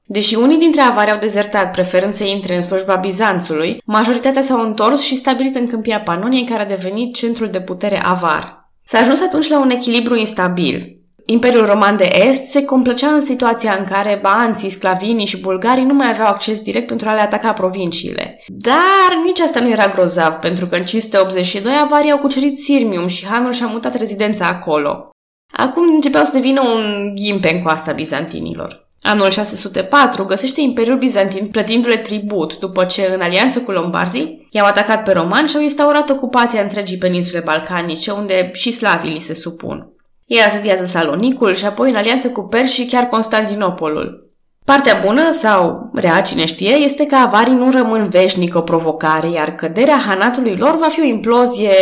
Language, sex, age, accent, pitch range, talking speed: Romanian, female, 20-39, native, 185-255 Hz, 175 wpm